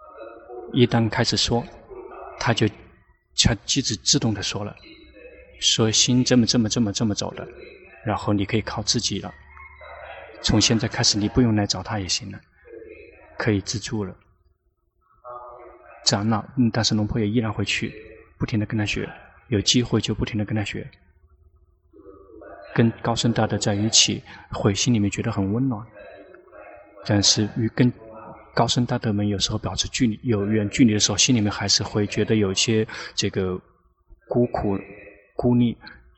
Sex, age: male, 20-39